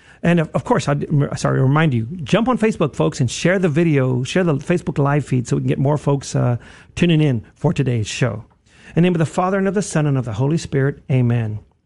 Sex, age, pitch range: male, 50-69, 120-150 Hz